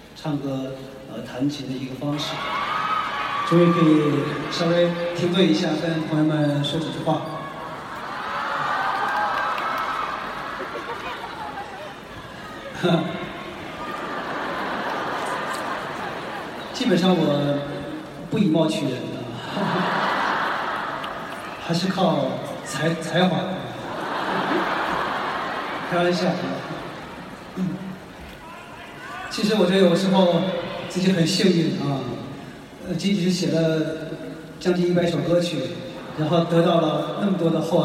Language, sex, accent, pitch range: Chinese, male, native, 155-180 Hz